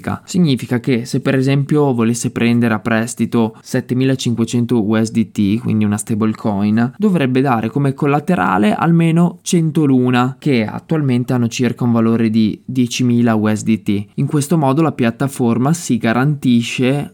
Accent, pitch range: native, 115-145 Hz